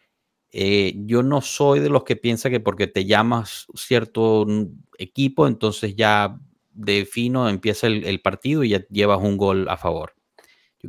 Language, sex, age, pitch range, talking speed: Spanish, male, 30-49, 95-115 Hz, 165 wpm